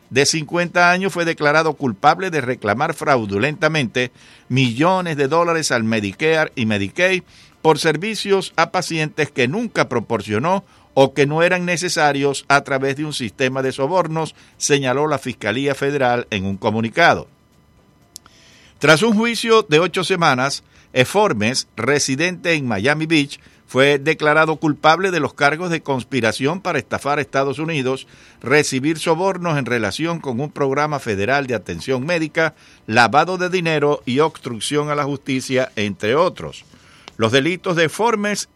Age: 60-79